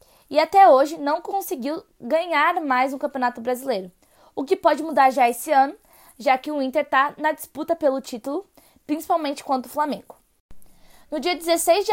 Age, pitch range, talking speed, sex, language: 20-39, 265-320 Hz, 170 wpm, female, Portuguese